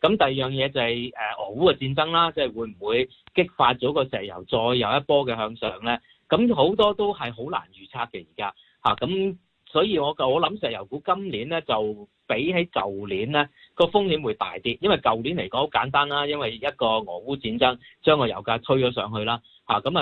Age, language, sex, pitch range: 30-49, Chinese, male, 115-165 Hz